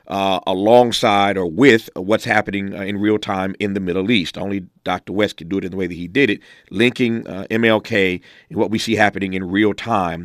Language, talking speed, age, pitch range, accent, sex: English, 220 wpm, 40-59, 95-115 Hz, American, male